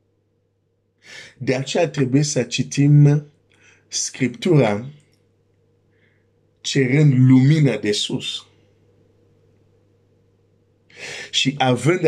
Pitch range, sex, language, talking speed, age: 100-125 Hz, male, Romanian, 60 wpm, 50-69